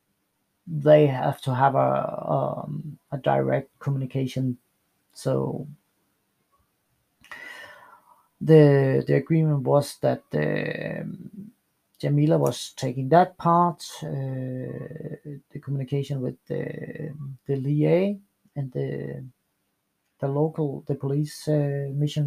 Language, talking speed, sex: English, 95 wpm, male